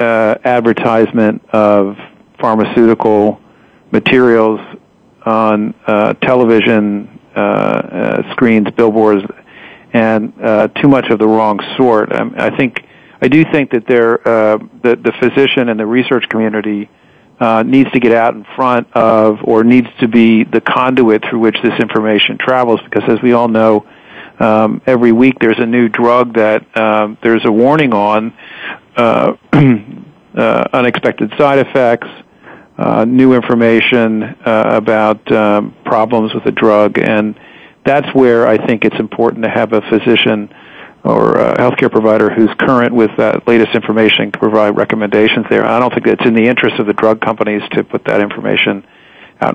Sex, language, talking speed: male, English, 155 wpm